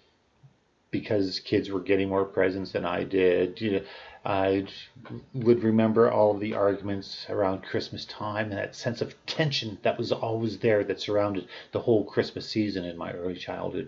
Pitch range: 100-125 Hz